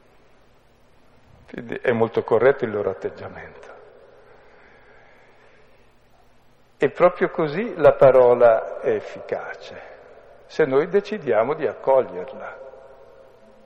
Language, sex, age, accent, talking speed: Italian, male, 60-79, native, 85 wpm